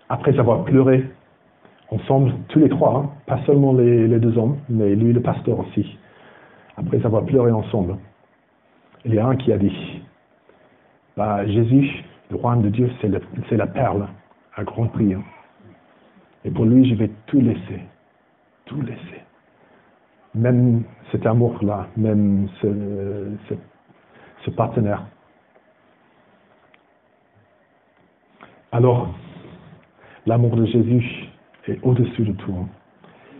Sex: male